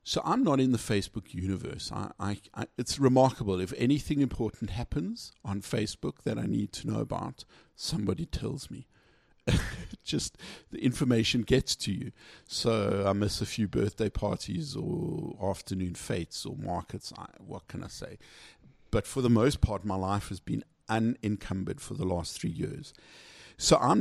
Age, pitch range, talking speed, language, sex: 50-69, 100-125 Hz, 155 wpm, English, male